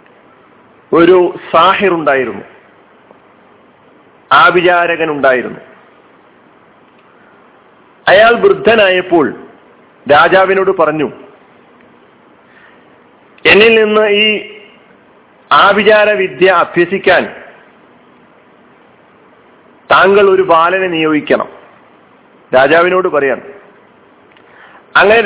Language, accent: Malayalam, native